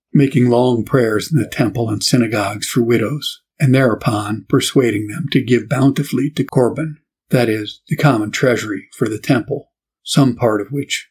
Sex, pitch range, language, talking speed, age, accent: male, 115-140 Hz, English, 165 wpm, 50-69, American